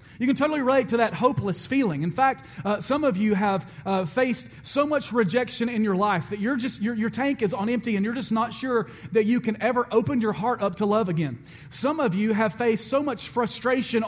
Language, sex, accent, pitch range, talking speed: English, male, American, 195-250 Hz, 240 wpm